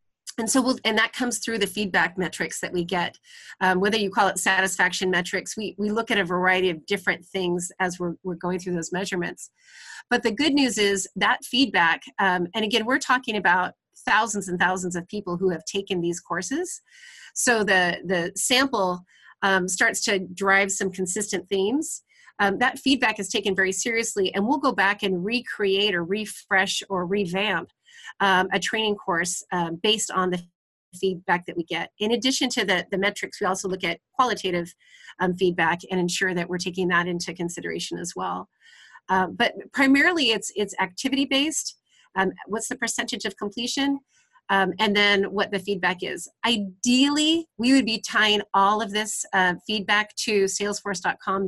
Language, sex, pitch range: English, female, 185-225 Hz